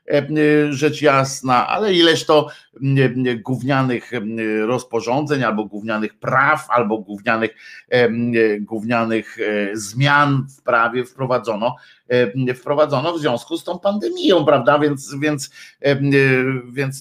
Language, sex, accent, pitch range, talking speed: Polish, male, native, 115-150 Hz, 95 wpm